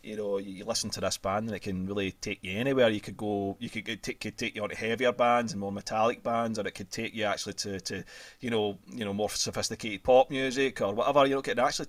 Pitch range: 95-110 Hz